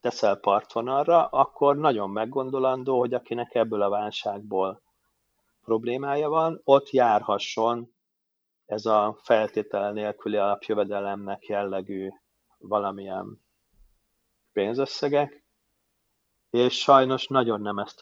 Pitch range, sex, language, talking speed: 105-125 Hz, male, Hungarian, 90 wpm